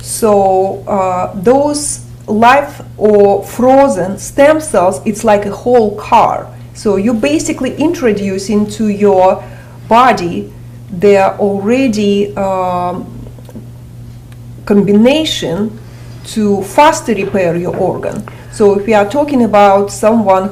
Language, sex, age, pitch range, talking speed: English, female, 30-49, 170-215 Hz, 105 wpm